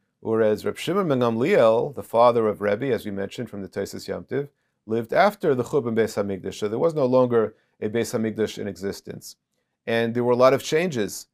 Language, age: English, 40-59